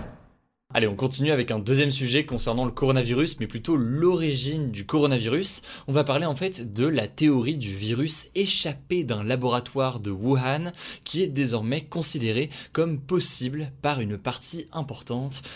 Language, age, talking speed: French, 20-39, 155 wpm